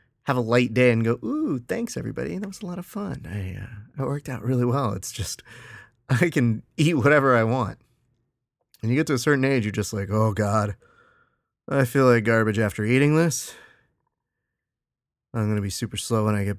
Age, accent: 30-49, American